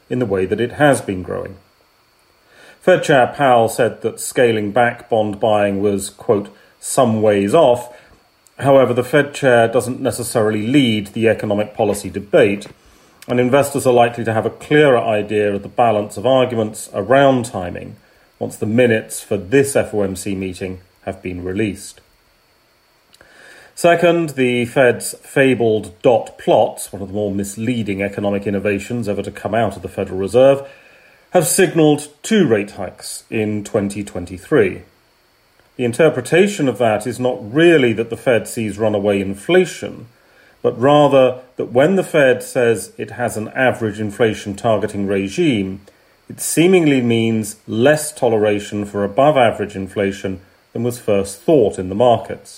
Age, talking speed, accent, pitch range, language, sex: 30-49, 150 wpm, British, 100-125 Hz, English, male